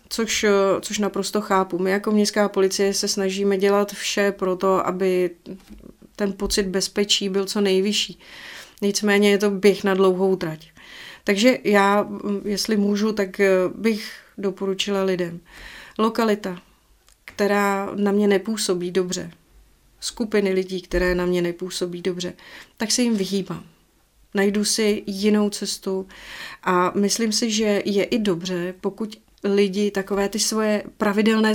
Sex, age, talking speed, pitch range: female, 30-49, 135 wpm, 190-210 Hz